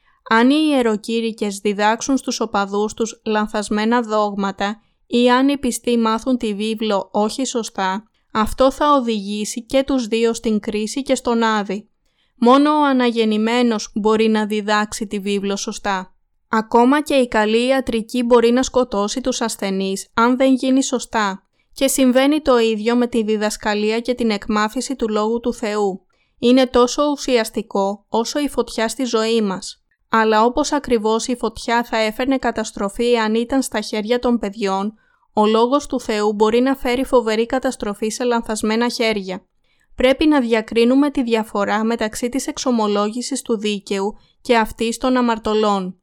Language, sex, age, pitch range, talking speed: Greek, female, 20-39, 215-250 Hz, 150 wpm